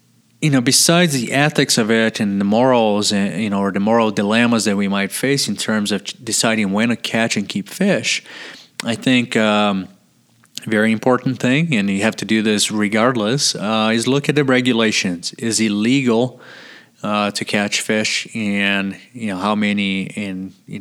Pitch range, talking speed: 100-120 Hz, 185 wpm